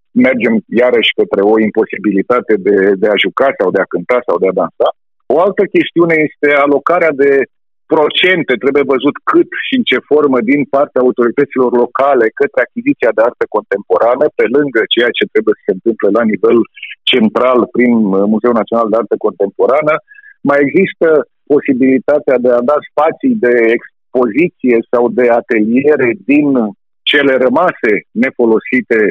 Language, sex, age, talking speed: Romanian, male, 50-69, 150 wpm